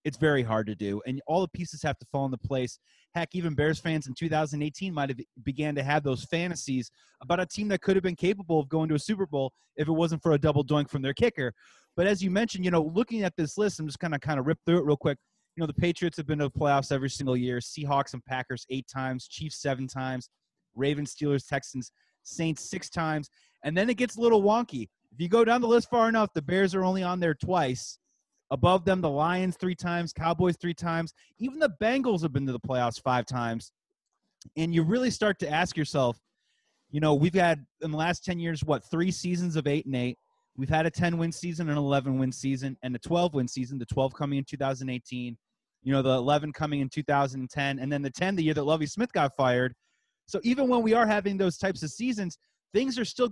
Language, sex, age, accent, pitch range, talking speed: English, male, 30-49, American, 135-185 Hz, 235 wpm